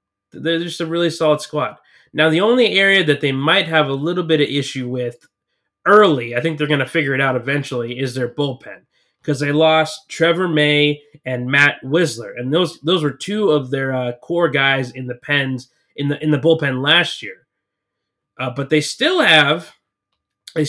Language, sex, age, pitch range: English, male, 20-39, 130-160 Hz